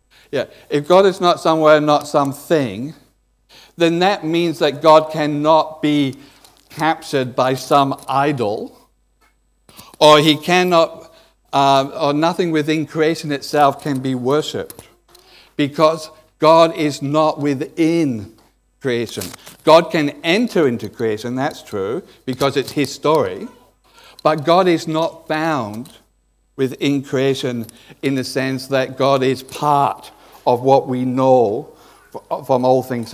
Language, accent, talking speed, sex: English, British, 125 wpm, male